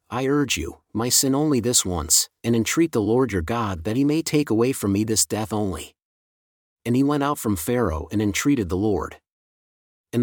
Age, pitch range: 40-59, 100-130 Hz